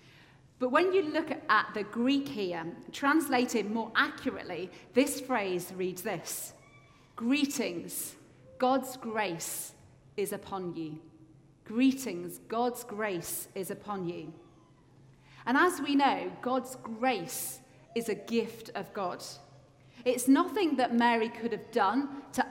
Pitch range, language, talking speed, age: 180-260 Hz, English, 125 wpm, 40-59